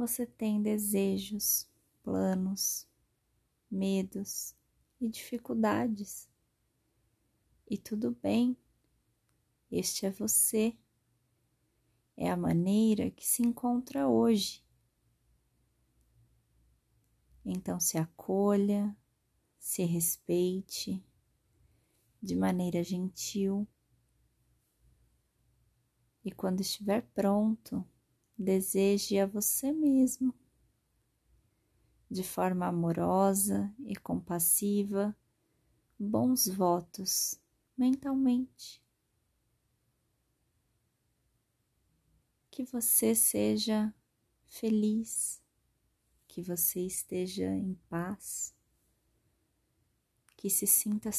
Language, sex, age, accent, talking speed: Portuguese, female, 20-39, Brazilian, 65 wpm